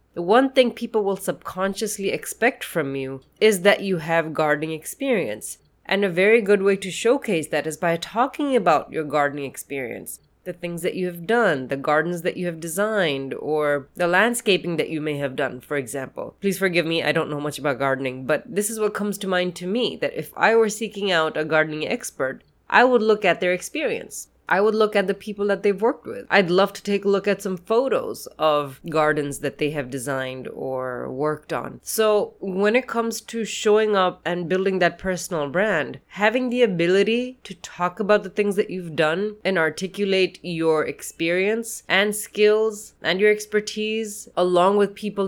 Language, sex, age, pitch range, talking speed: English, female, 20-39, 155-210 Hz, 195 wpm